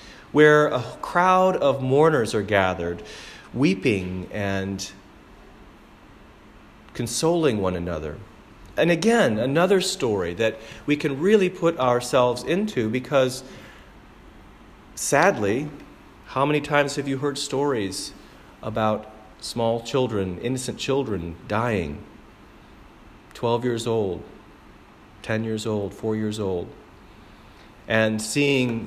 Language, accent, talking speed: English, American, 100 wpm